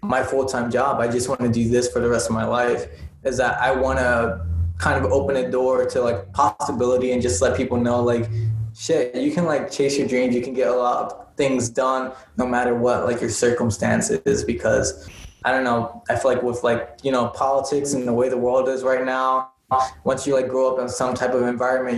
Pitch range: 115-130 Hz